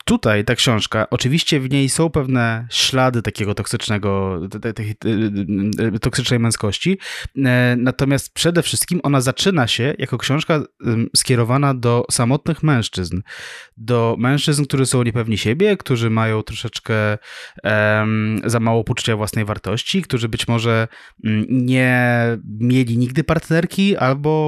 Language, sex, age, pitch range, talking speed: Polish, male, 20-39, 115-140 Hz, 115 wpm